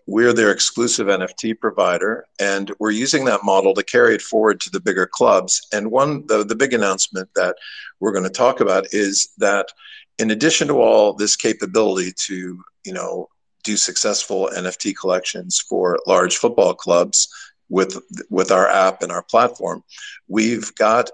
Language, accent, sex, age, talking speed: English, American, male, 50-69, 165 wpm